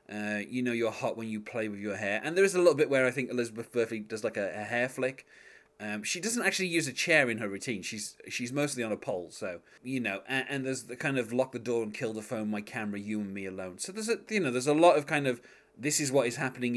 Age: 30-49